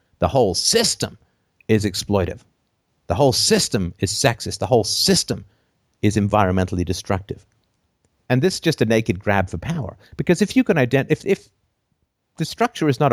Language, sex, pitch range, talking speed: English, male, 95-125 Hz, 165 wpm